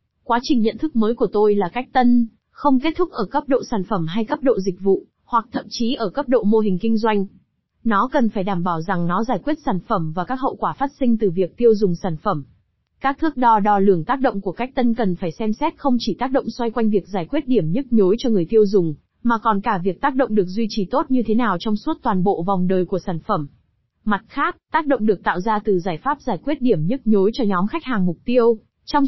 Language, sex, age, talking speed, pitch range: Vietnamese, female, 20-39, 270 wpm, 195-250 Hz